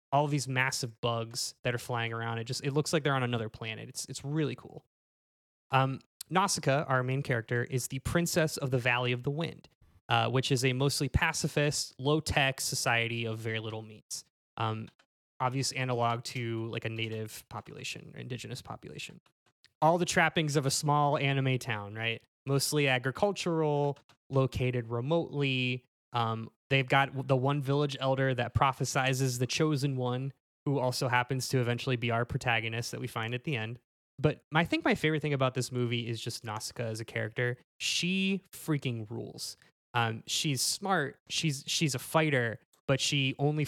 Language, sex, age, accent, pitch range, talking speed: English, male, 20-39, American, 120-145 Hz, 165 wpm